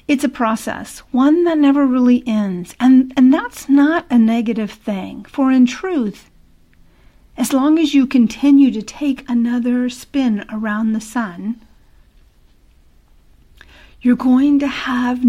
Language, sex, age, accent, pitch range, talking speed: English, female, 50-69, American, 220-270 Hz, 135 wpm